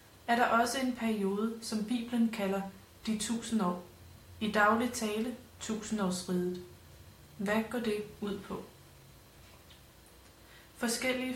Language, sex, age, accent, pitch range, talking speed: Danish, female, 30-49, native, 190-230 Hz, 105 wpm